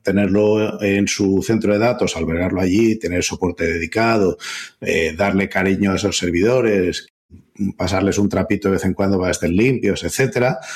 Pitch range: 90-110 Hz